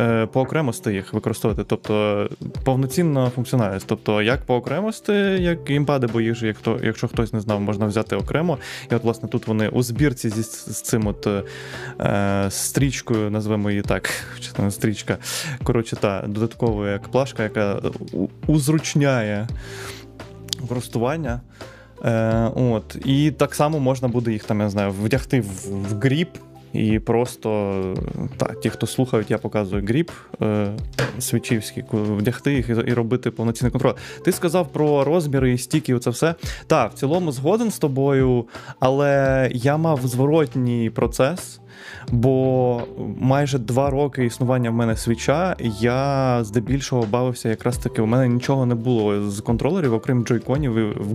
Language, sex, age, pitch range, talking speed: Ukrainian, male, 20-39, 110-135 Hz, 140 wpm